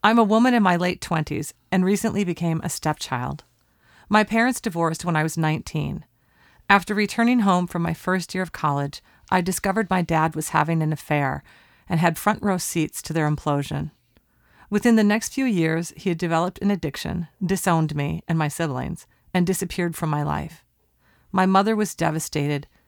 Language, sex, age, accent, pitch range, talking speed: English, female, 40-59, American, 155-195 Hz, 175 wpm